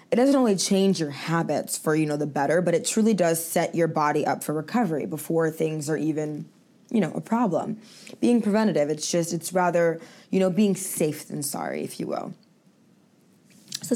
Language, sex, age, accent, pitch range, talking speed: English, female, 20-39, American, 160-215 Hz, 195 wpm